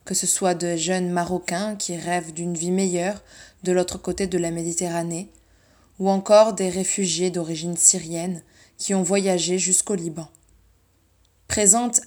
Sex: female